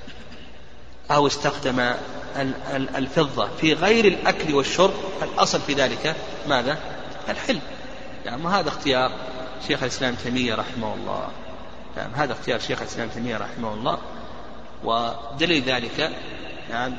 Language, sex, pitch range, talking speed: Arabic, male, 125-150 Hz, 110 wpm